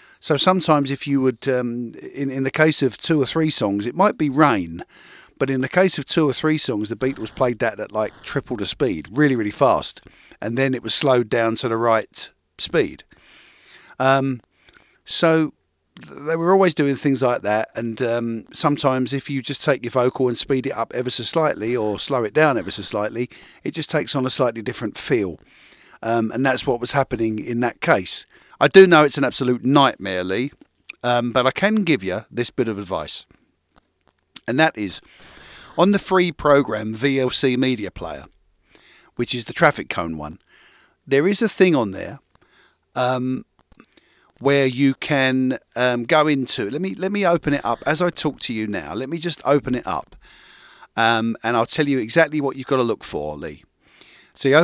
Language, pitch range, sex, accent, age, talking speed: English, 115-150 Hz, male, British, 40-59, 200 wpm